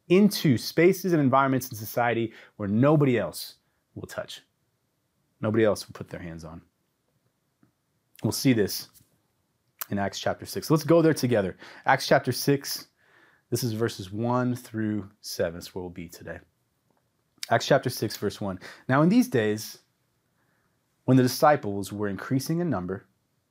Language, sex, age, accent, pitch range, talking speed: English, male, 30-49, American, 100-140 Hz, 150 wpm